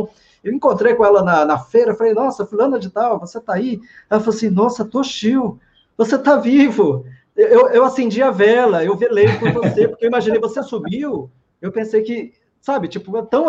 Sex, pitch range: male, 160-215 Hz